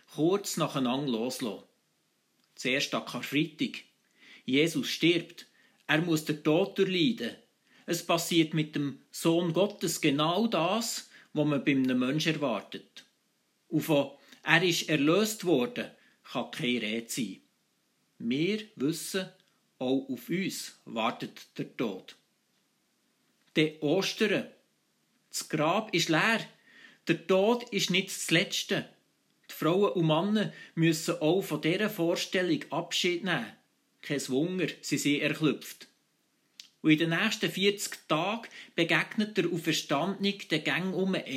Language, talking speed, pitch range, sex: German, 125 wpm, 155-200 Hz, male